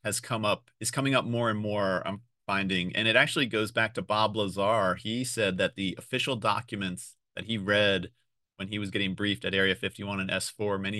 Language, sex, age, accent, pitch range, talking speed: English, male, 30-49, American, 95-115 Hz, 215 wpm